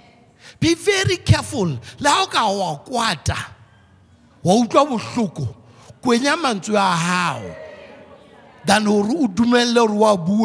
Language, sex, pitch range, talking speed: English, male, 175-280 Hz, 85 wpm